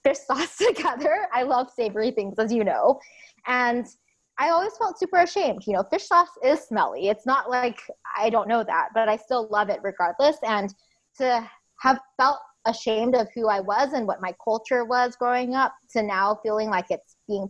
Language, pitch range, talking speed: English, 205-250 Hz, 195 wpm